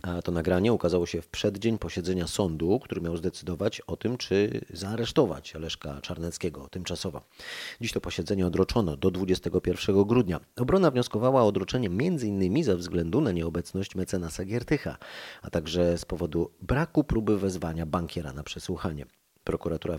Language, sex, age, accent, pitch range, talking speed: Polish, male, 30-49, native, 85-105 Hz, 145 wpm